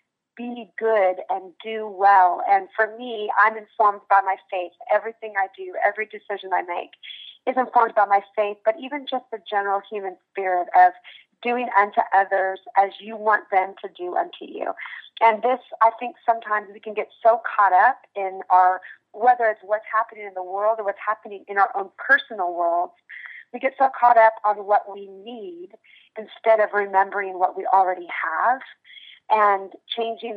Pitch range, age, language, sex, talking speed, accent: 195-230 Hz, 30-49, English, female, 180 wpm, American